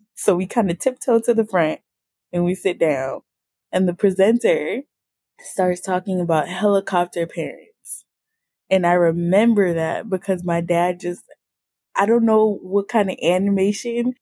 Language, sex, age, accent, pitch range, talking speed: English, female, 10-29, American, 180-225 Hz, 150 wpm